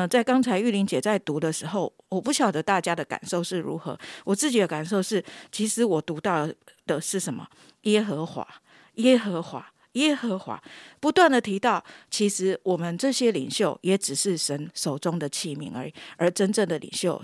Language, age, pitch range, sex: Chinese, 50-69, 160-215 Hz, female